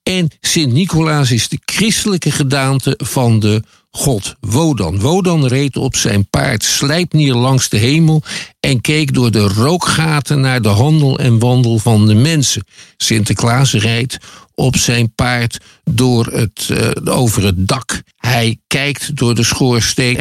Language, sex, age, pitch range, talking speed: Dutch, male, 50-69, 110-150 Hz, 145 wpm